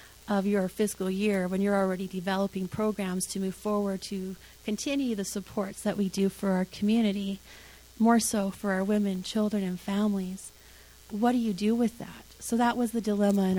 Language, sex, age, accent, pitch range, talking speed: English, female, 30-49, American, 185-210 Hz, 185 wpm